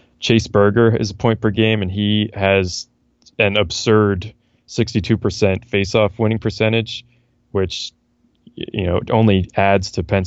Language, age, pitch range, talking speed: English, 20-39, 95-115 Hz, 135 wpm